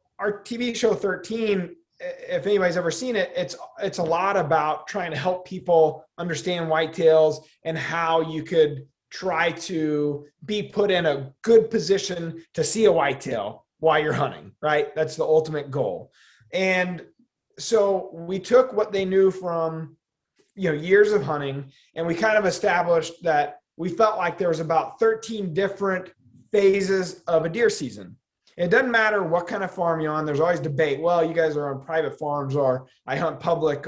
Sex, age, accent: male, 30-49, American